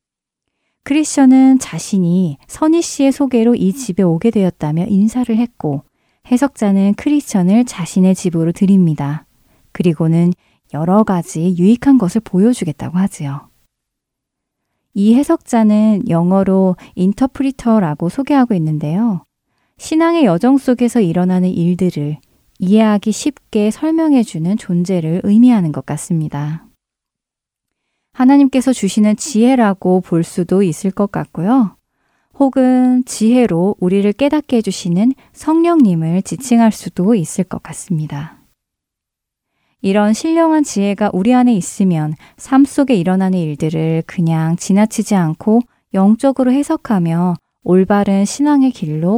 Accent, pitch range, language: native, 175-245 Hz, Korean